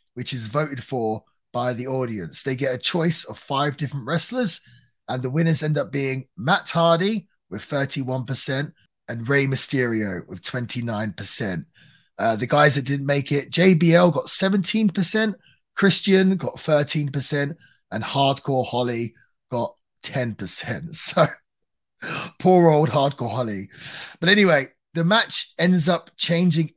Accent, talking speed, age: British, 135 wpm, 30-49